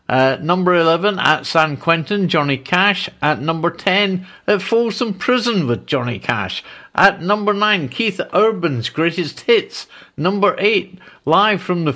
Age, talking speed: 50-69, 145 wpm